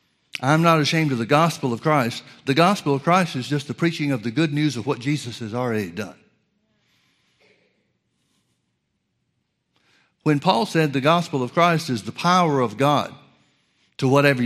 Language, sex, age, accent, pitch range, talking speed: English, male, 60-79, American, 130-165 Hz, 165 wpm